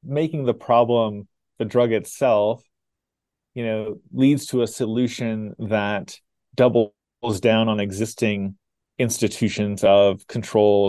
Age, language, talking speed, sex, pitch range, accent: 30-49, English, 110 wpm, male, 100-115 Hz, American